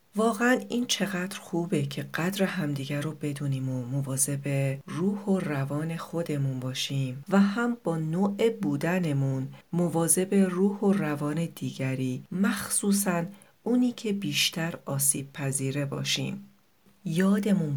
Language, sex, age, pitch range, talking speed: Persian, female, 40-59, 140-195 Hz, 115 wpm